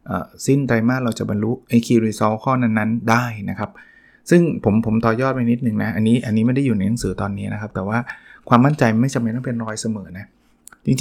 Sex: male